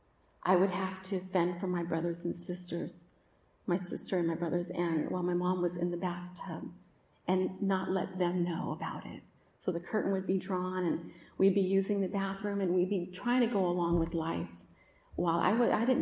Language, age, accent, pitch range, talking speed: English, 40-59, American, 180-230 Hz, 210 wpm